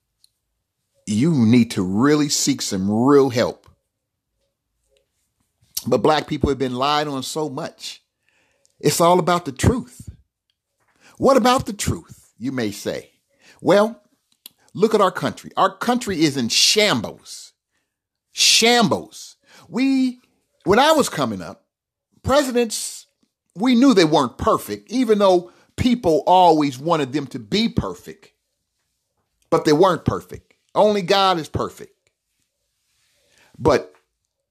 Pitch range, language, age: 145-230 Hz, English, 50-69